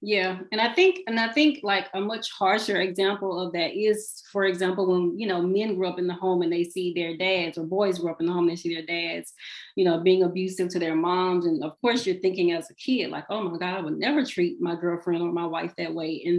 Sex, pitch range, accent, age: female, 175-205 Hz, American, 30-49